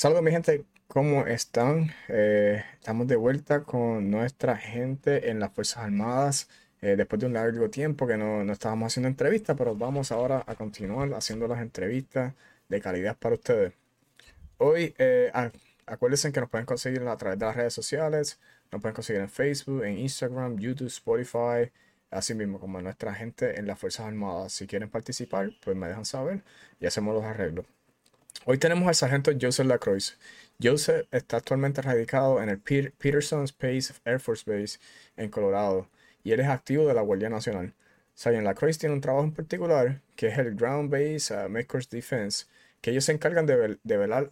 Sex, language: male, English